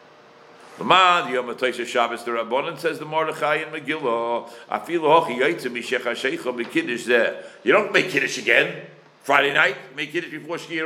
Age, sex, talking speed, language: 60-79, male, 60 wpm, English